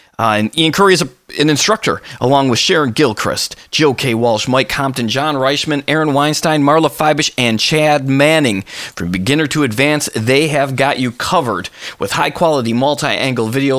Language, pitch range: English, 115-155 Hz